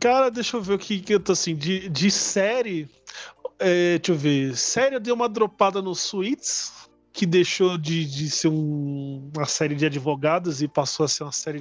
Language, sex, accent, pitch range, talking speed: Portuguese, male, Brazilian, 160-225 Hz, 205 wpm